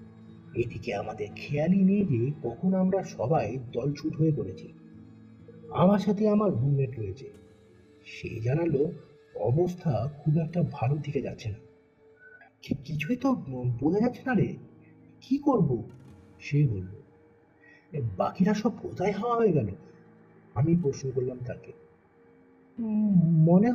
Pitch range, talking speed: 125-205 Hz, 55 wpm